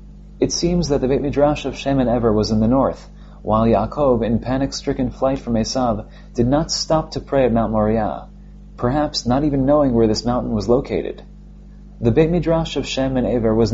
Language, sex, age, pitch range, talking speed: English, male, 30-49, 115-135 Hz, 200 wpm